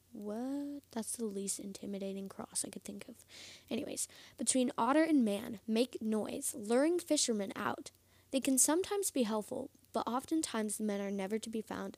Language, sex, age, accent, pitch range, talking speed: English, female, 10-29, American, 200-275 Hz, 170 wpm